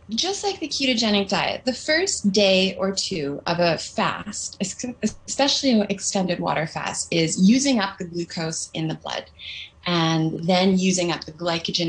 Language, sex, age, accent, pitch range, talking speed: English, female, 20-39, American, 160-215 Hz, 160 wpm